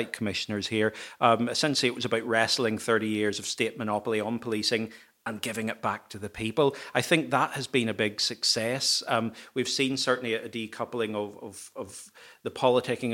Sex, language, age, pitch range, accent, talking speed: male, English, 40-59, 110-130 Hz, British, 180 wpm